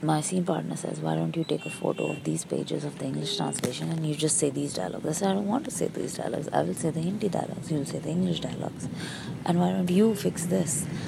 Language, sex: English, female